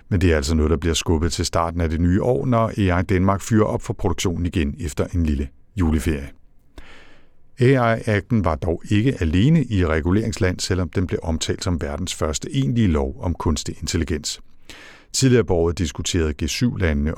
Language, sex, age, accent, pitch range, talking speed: Danish, male, 60-79, native, 80-105 Hz, 170 wpm